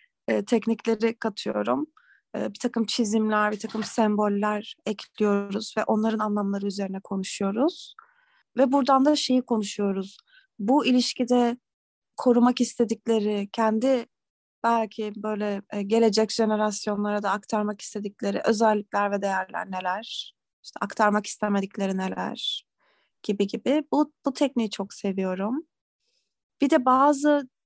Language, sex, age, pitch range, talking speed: Turkish, female, 30-49, 210-250 Hz, 115 wpm